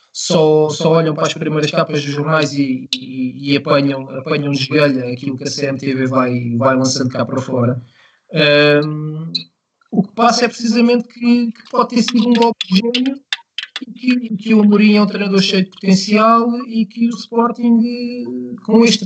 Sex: male